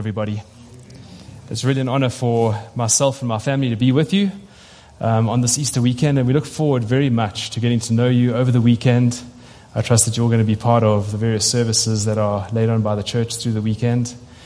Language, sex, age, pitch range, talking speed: English, male, 20-39, 115-130 Hz, 230 wpm